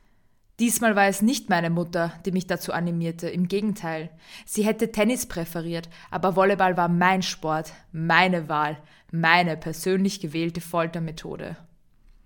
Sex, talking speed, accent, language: female, 130 wpm, German, German